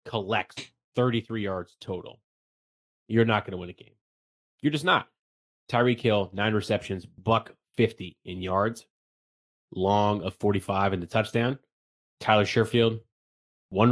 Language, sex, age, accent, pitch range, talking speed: English, male, 30-49, American, 90-115 Hz, 135 wpm